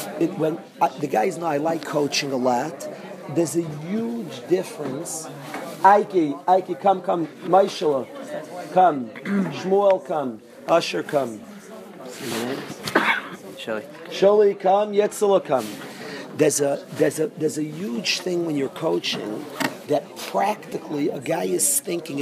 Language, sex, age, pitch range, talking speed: English, male, 40-59, 145-190 Hz, 115 wpm